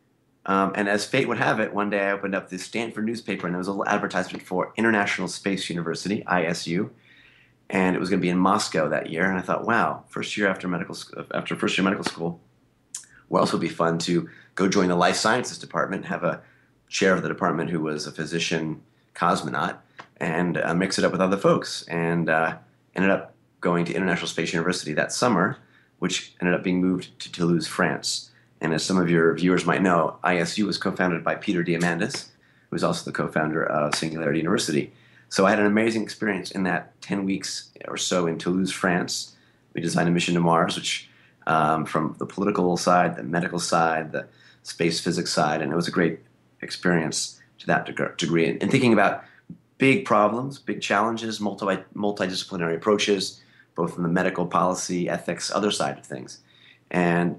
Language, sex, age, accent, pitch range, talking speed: English, male, 30-49, American, 85-100 Hz, 195 wpm